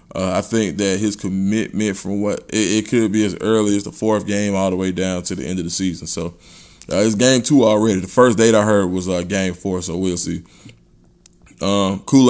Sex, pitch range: male, 95-110 Hz